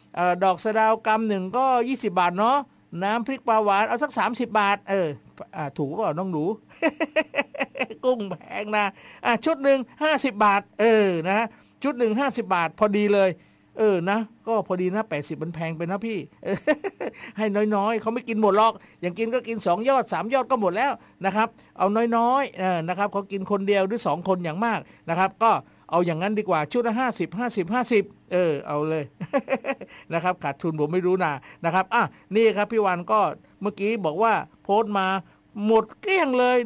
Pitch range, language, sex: 185-240 Hz, Thai, male